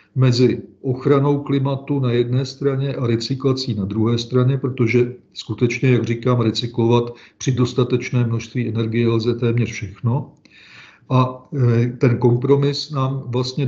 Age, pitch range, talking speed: 40-59, 120-135 Hz, 125 wpm